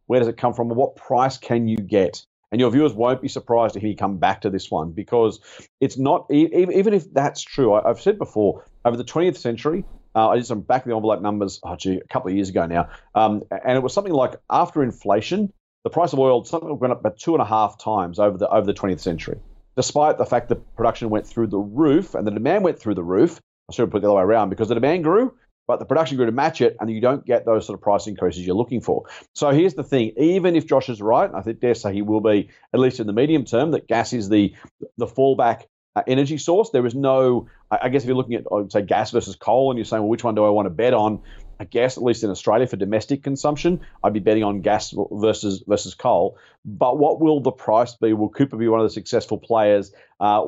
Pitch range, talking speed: 105-130 Hz, 255 wpm